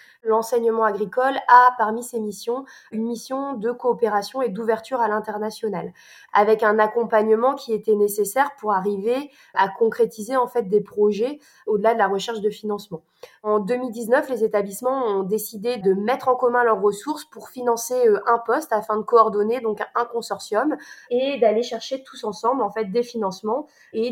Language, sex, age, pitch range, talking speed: French, female, 20-39, 210-245 Hz, 165 wpm